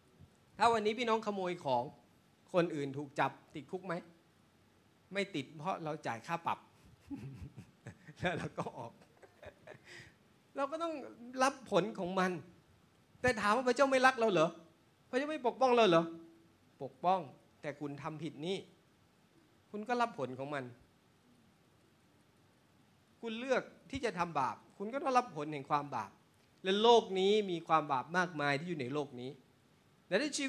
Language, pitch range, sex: Thai, 145-200 Hz, male